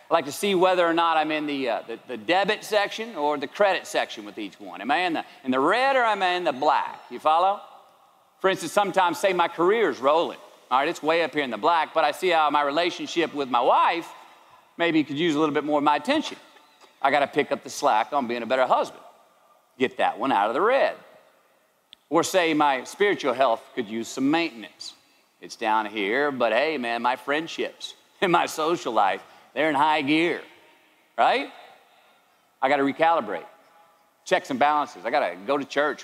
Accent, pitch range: American, 150-225 Hz